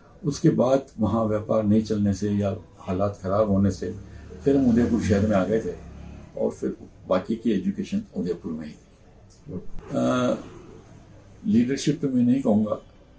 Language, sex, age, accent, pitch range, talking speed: Hindi, male, 60-79, native, 105-145 Hz, 150 wpm